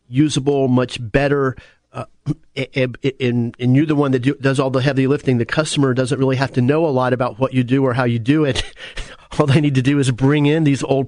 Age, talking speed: 40-59, 240 wpm